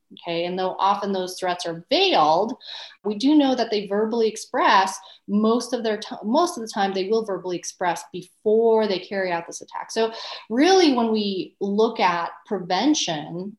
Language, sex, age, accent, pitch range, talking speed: English, female, 30-49, American, 175-220 Hz, 175 wpm